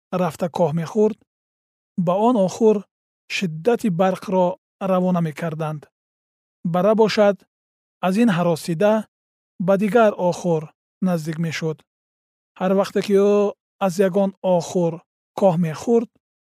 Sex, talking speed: male, 120 wpm